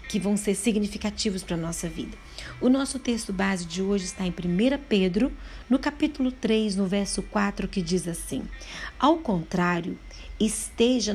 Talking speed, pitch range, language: 160 wpm, 180-225 Hz, Portuguese